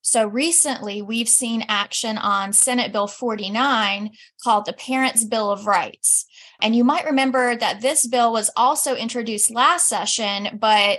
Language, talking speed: English, 155 wpm